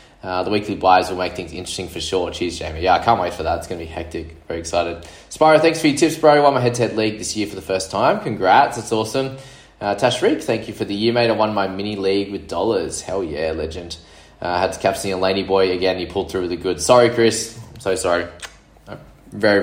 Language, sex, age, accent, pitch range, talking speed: English, male, 20-39, Australian, 90-115 Hz, 255 wpm